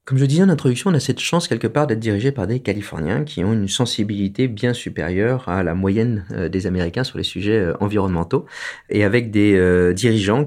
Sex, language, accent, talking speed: male, French, French, 205 wpm